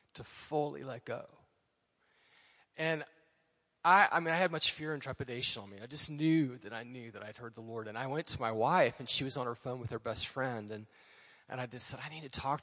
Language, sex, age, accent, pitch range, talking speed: English, male, 30-49, American, 120-160 Hz, 245 wpm